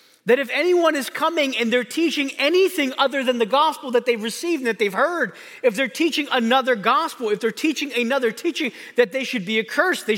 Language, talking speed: English, 210 wpm